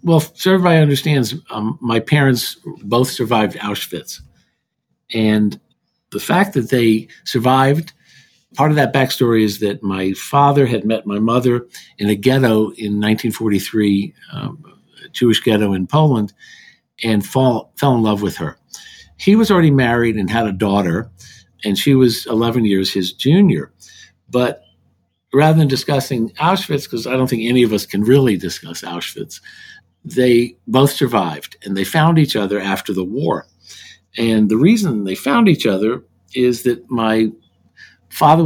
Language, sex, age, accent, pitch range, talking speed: English, male, 50-69, American, 105-135 Hz, 155 wpm